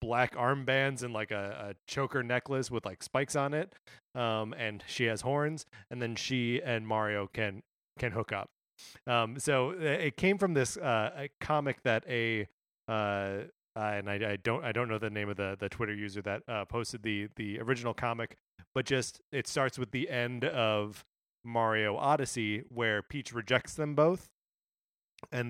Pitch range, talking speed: 110-135 Hz, 180 wpm